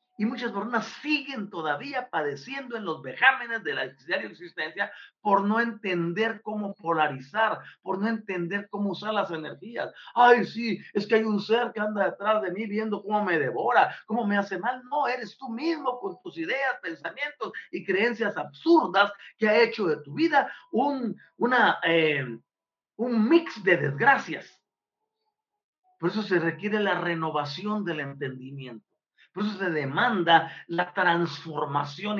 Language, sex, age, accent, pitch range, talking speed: Spanish, male, 50-69, Mexican, 165-235 Hz, 150 wpm